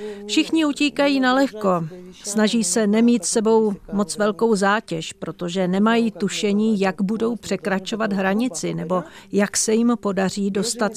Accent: native